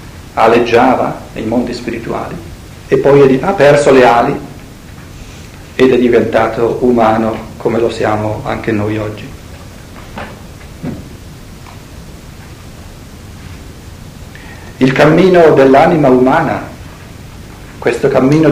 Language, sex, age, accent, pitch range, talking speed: Italian, male, 50-69, native, 105-135 Hz, 85 wpm